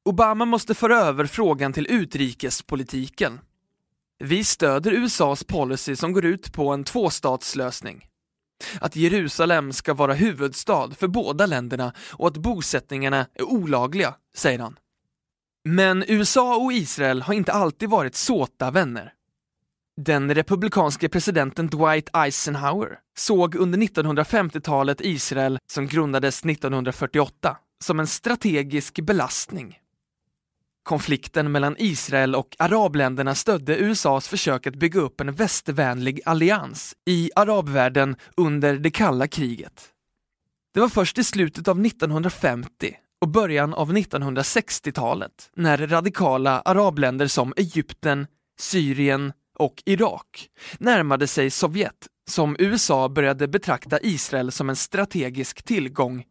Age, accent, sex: 20-39, native, male